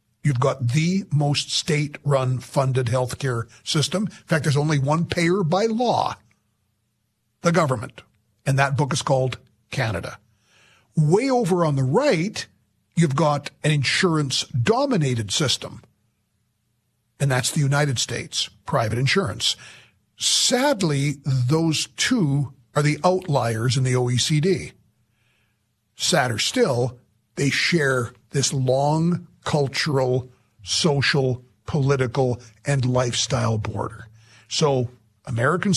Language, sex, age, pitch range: English, male, 60-79, 120-150 Hz